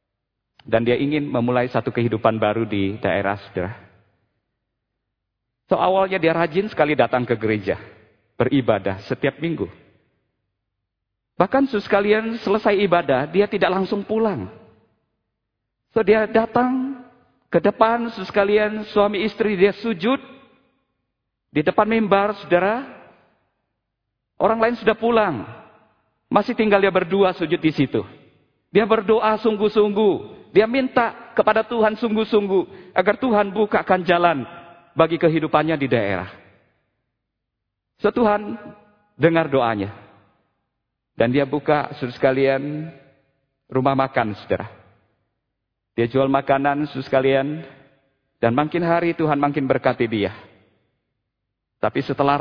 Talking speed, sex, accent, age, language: 110 wpm, male, native, 50-69, Indonesian